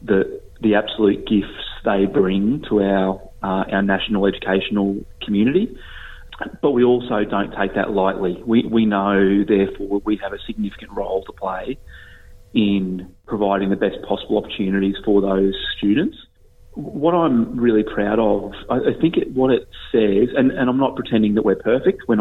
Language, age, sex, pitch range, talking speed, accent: English, 30-49, male, 100-110 Hz, 165 wpm, Australian